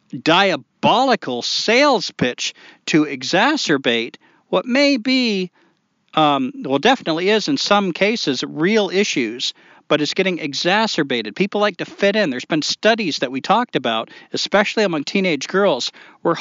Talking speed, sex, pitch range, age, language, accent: 140 wpm, male, 150-215 Hz, 40-59, English, American